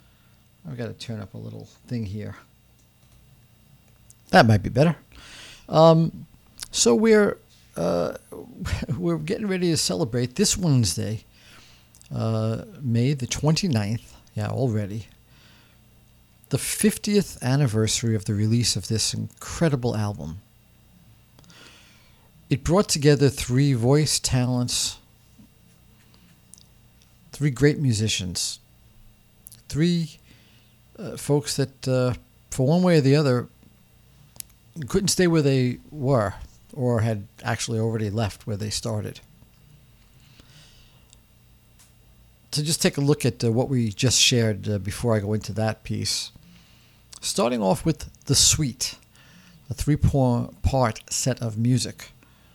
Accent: American